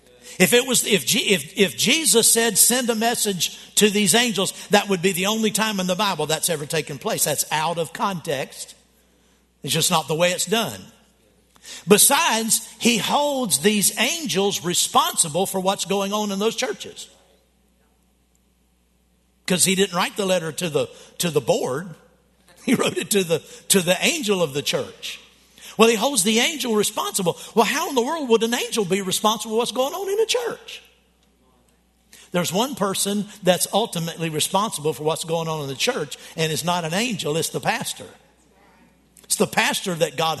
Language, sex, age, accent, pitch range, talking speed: English, male, 60-79, American, 170-230 Hz, 185 wpm